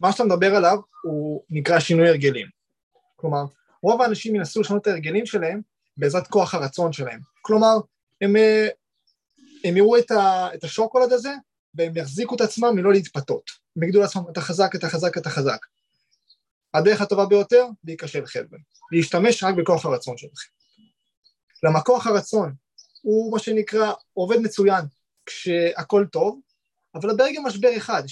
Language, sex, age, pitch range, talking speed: Hebrew, male, 20-39, 170-225 Hz, 145 wpm